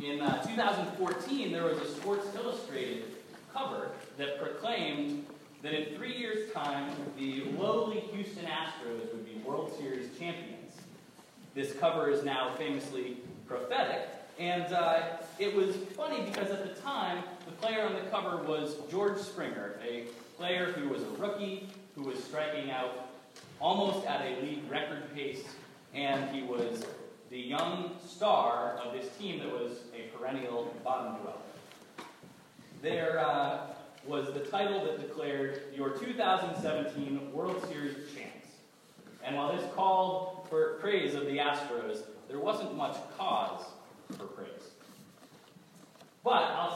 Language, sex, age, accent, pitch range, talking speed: English, male, 20-39, American, 140-195 Hz, 135 wpm